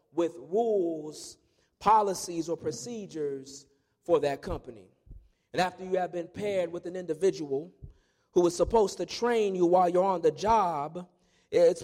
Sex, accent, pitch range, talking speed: male, American, 180-235 Hz, 145 wpm